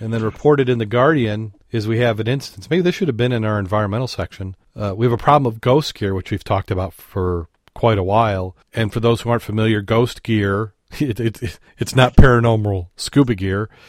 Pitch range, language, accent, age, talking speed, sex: 100-115 Hz, English, American, 40-59, 210 wpm, male